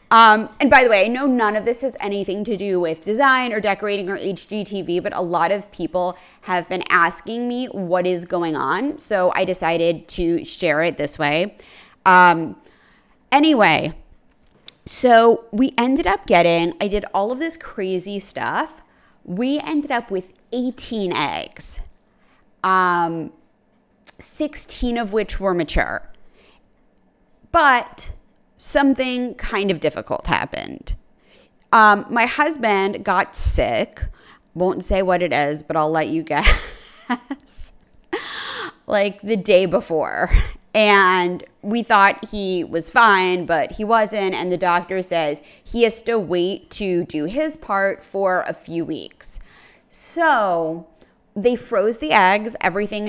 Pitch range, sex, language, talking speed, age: 180-235 Hz, female, English, 140 wpm, 30-49